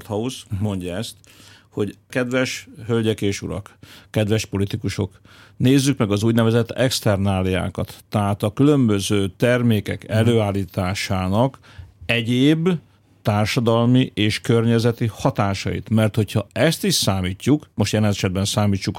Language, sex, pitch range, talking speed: Hungarian, male, 100-120 Hz, 105 wpm